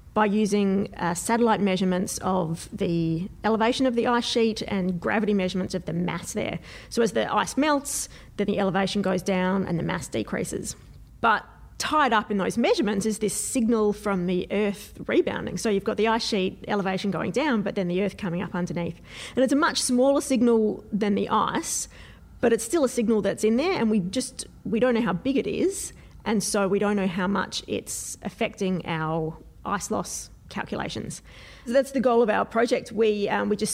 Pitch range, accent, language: 195-235 Hz, Australian, English